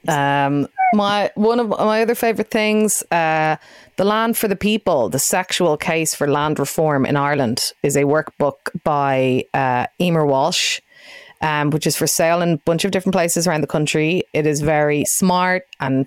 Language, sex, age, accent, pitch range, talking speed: English, female, 30-49, Irish, 150-200 Hz, 180 wpm